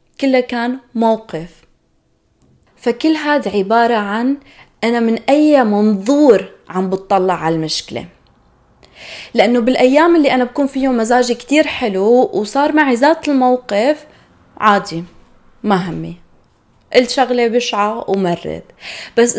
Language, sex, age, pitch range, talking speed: Arabic, female, 20-39, 195-260 Hz, 110 wpm